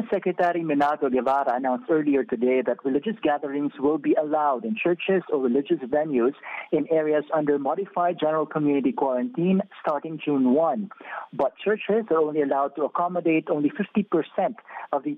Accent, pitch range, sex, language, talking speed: Filipino, 145-185 Hz, male, English, 150 wpm